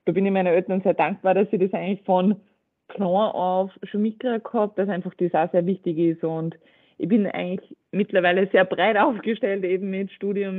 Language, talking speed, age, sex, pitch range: German, 195 wpm, 20-39, female, 180-210 Hz